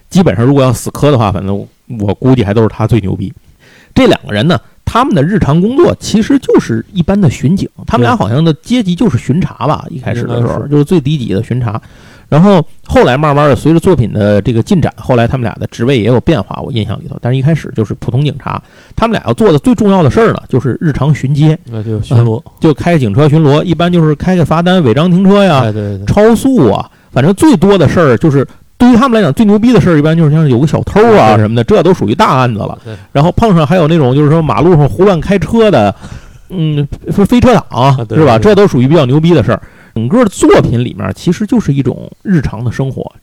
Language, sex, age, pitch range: Chinese, male, 50-69, 120-185 Hz